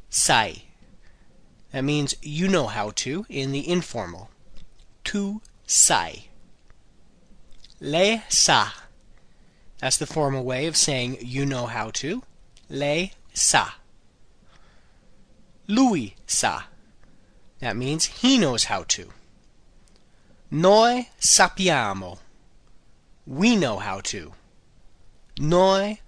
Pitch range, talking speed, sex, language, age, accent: 125-195 Hz, 95 wpm, male, Italian, 30-49, American